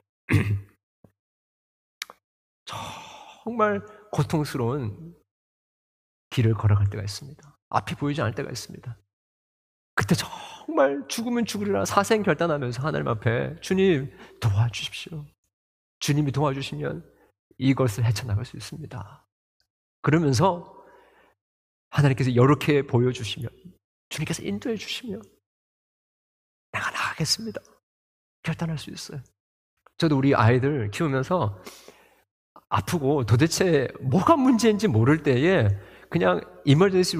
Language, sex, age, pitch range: Korean, male, 40-59, 110-180 Hz